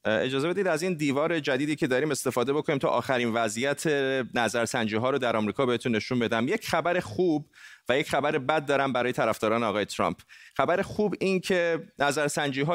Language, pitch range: Persian, 120-150 Hz